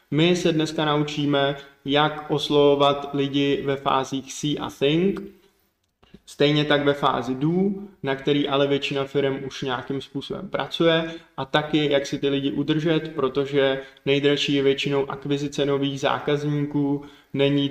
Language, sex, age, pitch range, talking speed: Czech, male, 20-39, 135-155 Hz, 140 wpm